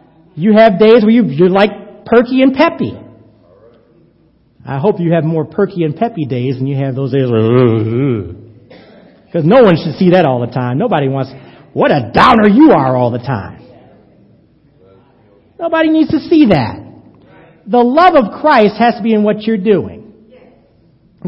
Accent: American